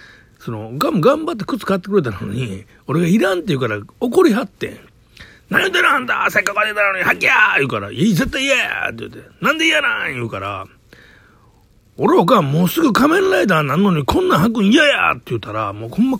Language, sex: Japanese, male